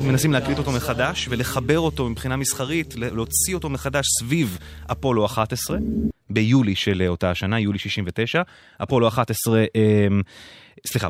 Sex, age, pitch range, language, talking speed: male, 20-39, 95-135 Hz, English, 130 wpm